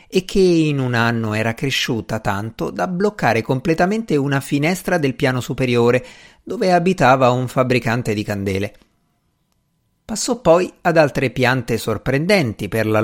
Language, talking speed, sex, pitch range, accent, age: Italian, 140 wpm, male, 110-150 Hz, native, 50-69